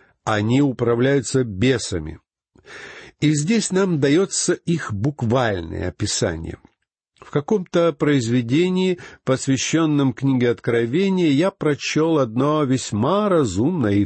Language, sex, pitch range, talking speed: Russian, male, 110-165 Hz, 95 wpm